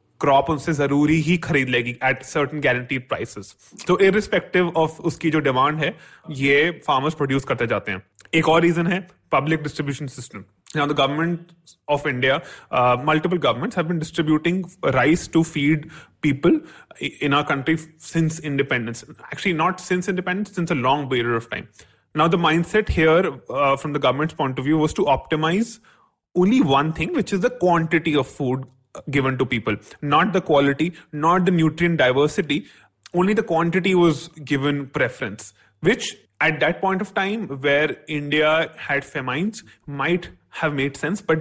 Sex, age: male, 30-49